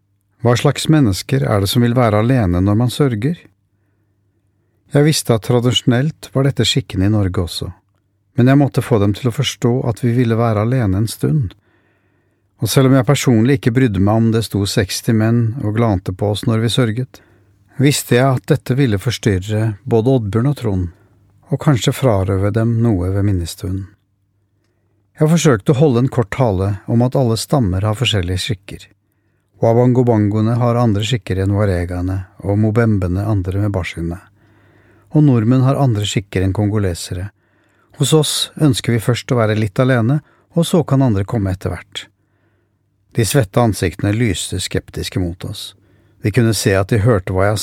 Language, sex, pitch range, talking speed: English, male, 100-125 Hz, 170 wpm